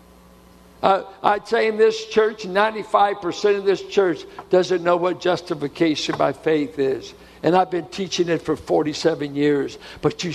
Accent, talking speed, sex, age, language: American, 155 wpm, male, 60-79, English